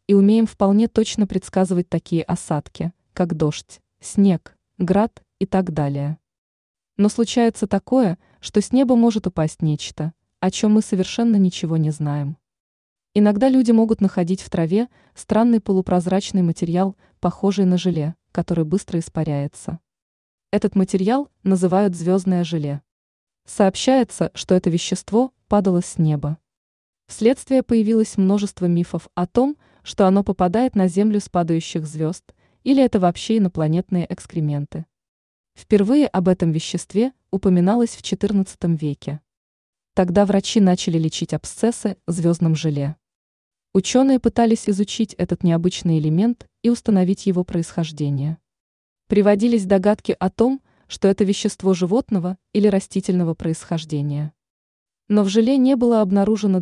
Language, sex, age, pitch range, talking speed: Russian, female, 20-39, 170-210 Hz, 125 wpm